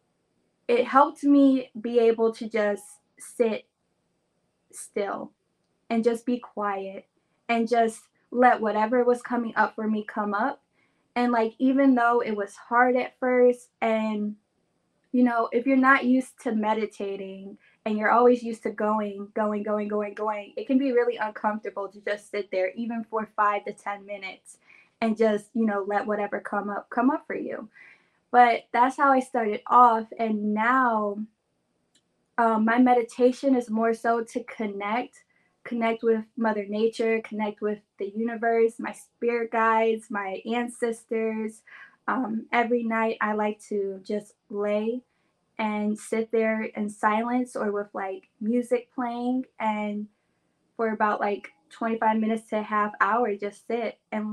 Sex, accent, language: female, American, English